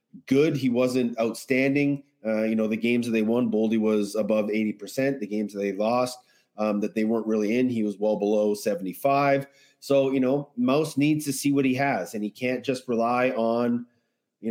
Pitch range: 110-135 Hz